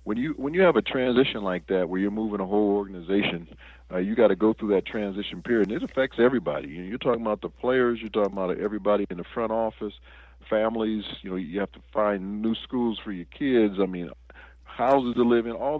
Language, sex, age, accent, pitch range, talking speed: English, male, 40-59, American, 95-115 Hz, 235 wpm